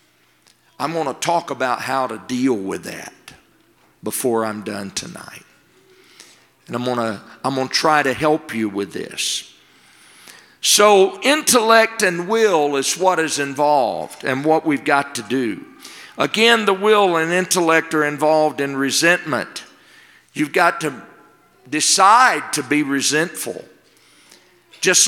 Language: English